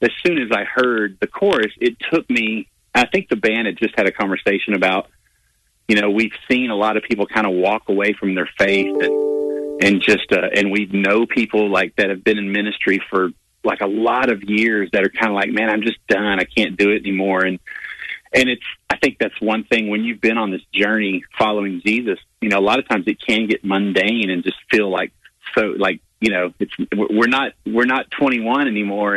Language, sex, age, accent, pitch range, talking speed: English, male, 40-59, American, 100-115 Hz, 225 wpm